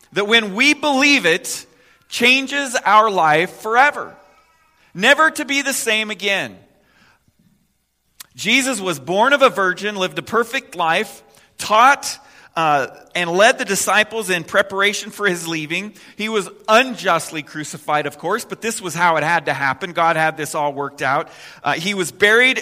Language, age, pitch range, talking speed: English, 40-59, 165-230 Hz, 160 wpm